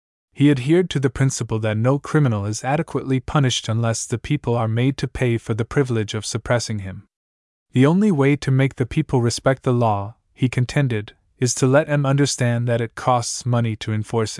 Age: 20-39